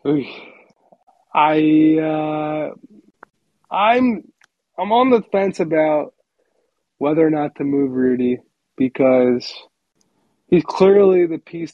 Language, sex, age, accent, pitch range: English, male, 20-39, American, 145-180 Hz